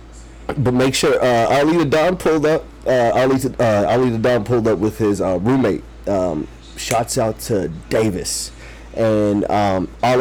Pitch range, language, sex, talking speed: 95-120 Hz, English, male, 170 wpm